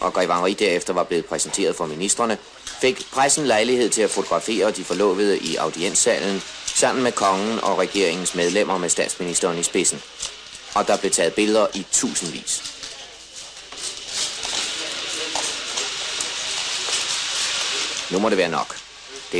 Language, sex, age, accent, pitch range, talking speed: Danish, male, 30-49, native, 110-140 Hz, 125 wpm